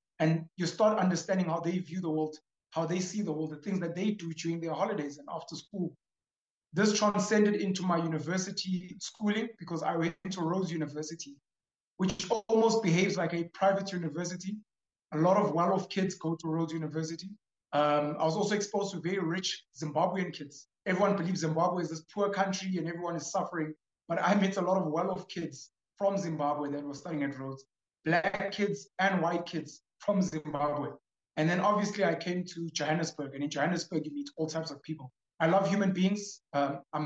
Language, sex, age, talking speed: Italian, male, 30-49, 190 wpm